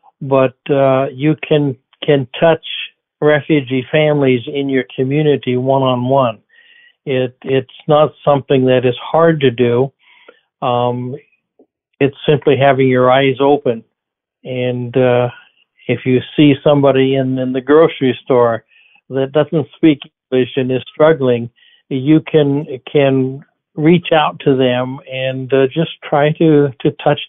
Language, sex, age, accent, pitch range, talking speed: English, male, 60-79, American, 130-155 Hz, 130 wpm